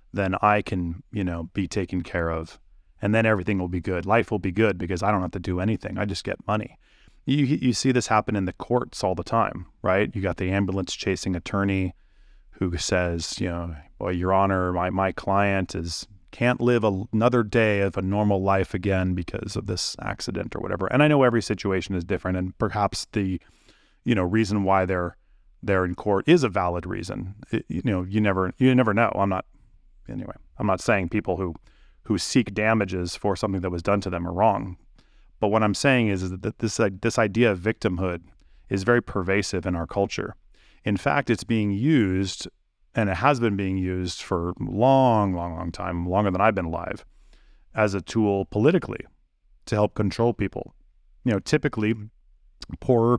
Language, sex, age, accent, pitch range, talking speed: English, male, 30-49, American, 90-110 Hz, 200 wpm